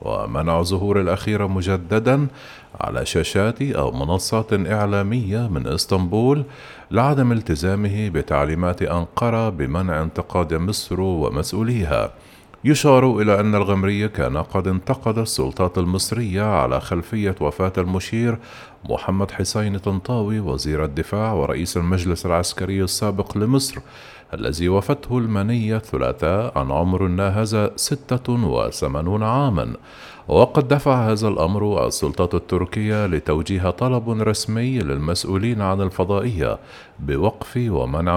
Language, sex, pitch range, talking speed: Arabic, male, 90-110 Hz, 100 wpm